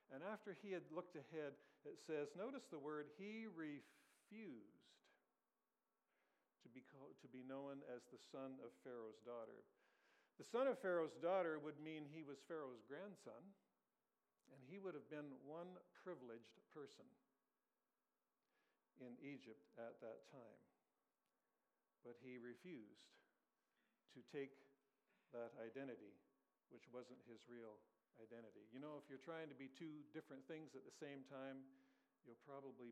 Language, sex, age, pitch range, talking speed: English, male, 60-79, 120-160 Hz, 140 wpm